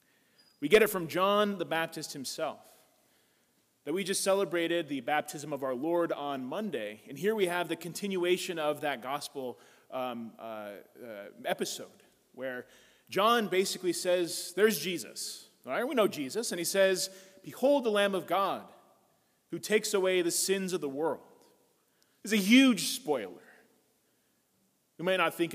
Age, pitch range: 30-49, 160-215 Hz